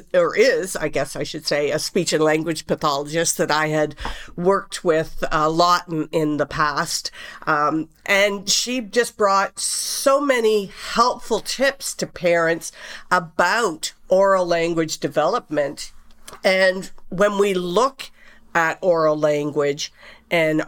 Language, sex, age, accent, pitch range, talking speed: English, female, 50-69, American, 155-195 Hz, 135 wpm